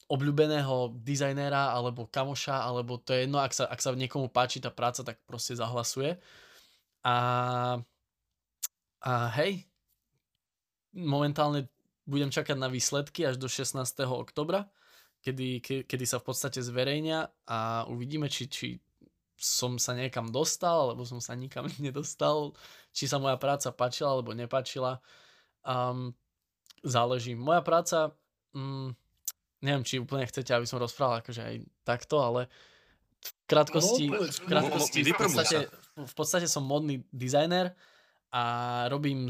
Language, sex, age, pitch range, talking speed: Slovak, male, 20-39, 125-145 Hz, 130 wpm